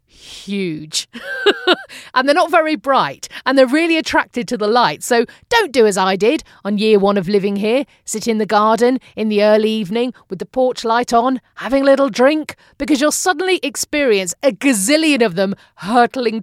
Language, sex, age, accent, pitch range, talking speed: English, female, 40-59, British, 190-280 Hz, 185 wpm